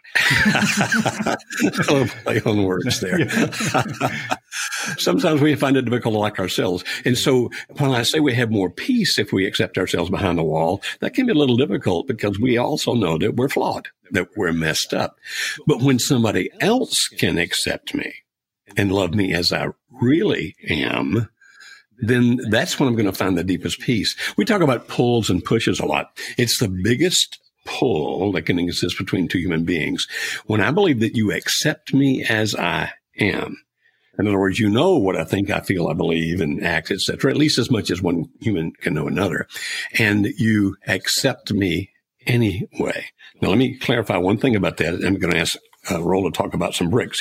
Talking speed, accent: 180 wpm, American